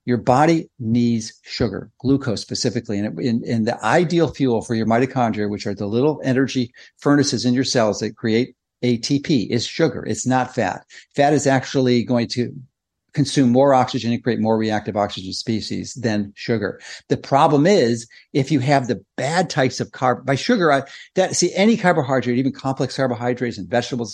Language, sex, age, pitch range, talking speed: English, male, 50-69, 120-140 Hz, 180 wpm